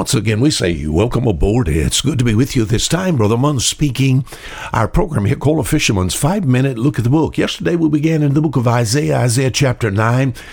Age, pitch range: 60-79, 110-145 Hz